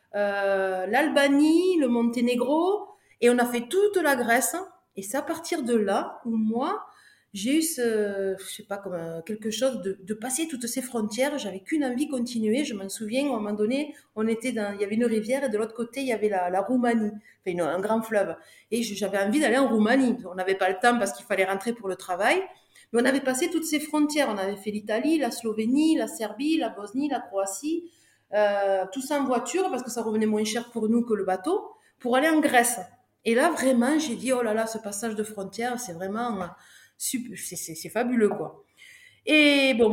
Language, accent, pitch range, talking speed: French, French, 210-285 Hz, 220 wpm